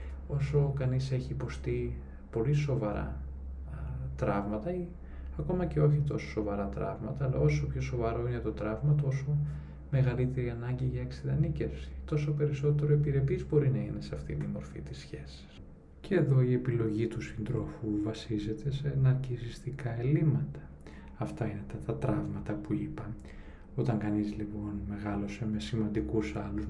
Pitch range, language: 100-135 Hz, Greek